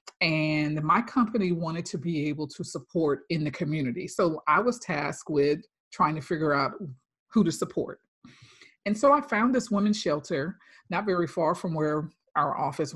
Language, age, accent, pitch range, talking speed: English, 40-59, American, 150-185 Hz, 175 wpm